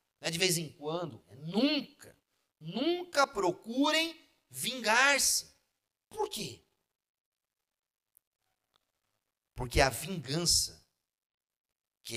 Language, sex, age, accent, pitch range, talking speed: Portuguese, male, 50-69, Brazilian, 135-215 Hz, 70 wpm